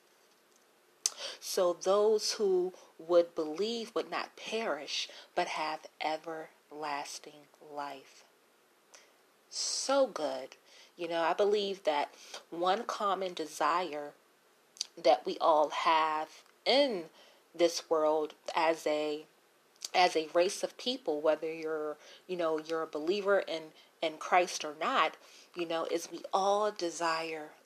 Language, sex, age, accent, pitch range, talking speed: English, female, 40-59, American, 155-190 Hz, 115 wpm